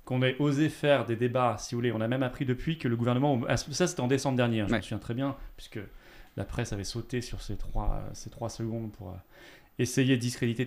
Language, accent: French, French